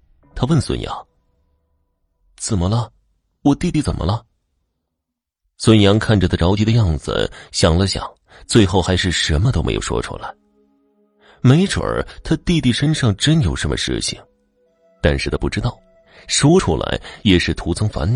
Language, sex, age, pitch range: Chinese, male, 30-49, 80-115 Hz